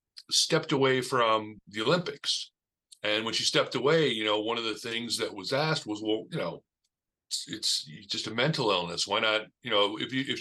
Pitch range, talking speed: 105-130 Hz, 210 wpm